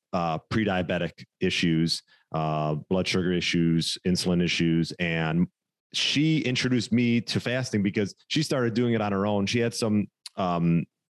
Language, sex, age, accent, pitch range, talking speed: English, male, 30-49, American, 85-105 Hz, 145 wpm